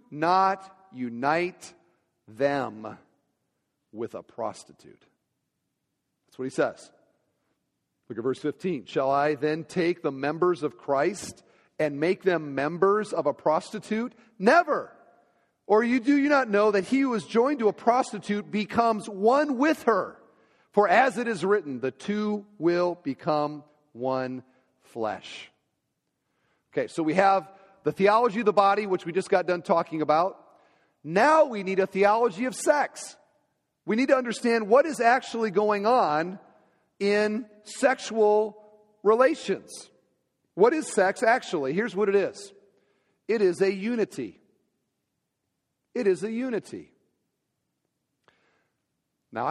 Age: 40-59